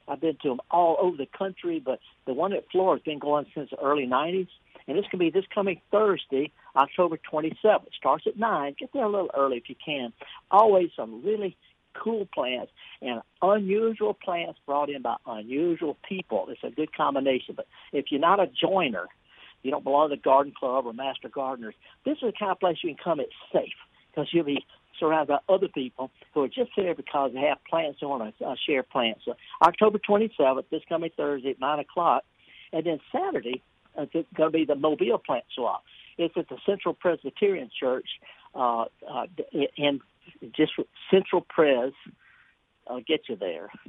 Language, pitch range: English, 140-200 Hz